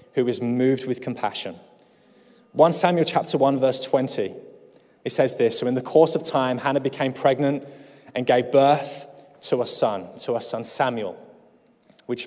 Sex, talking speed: male, 165 wpm